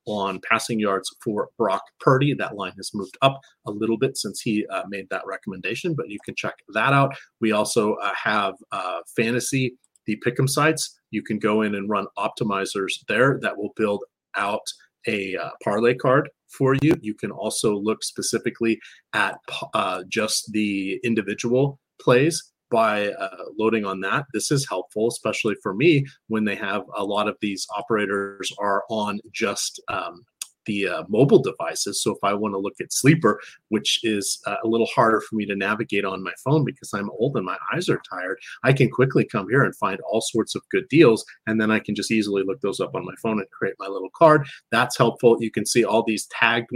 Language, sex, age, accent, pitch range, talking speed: English, male, 30-49, American, 105-130 Hz, 200 wpm